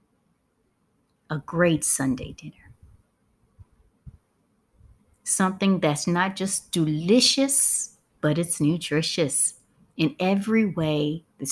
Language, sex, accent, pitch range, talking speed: English, female, American, 150-190 Hz, 85 wpm